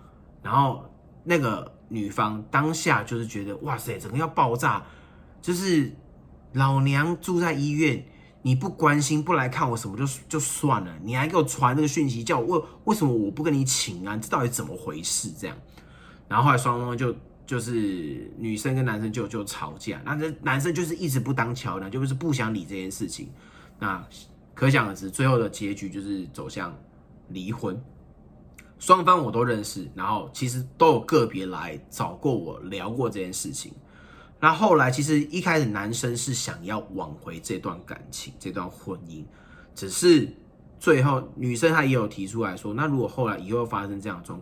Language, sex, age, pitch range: Chinese, male, 30-49, 100-150 Hz